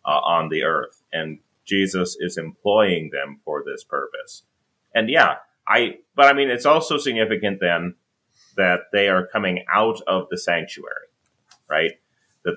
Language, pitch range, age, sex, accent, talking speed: English, 90-120 Hz, 30-49, male, American, 155 wpm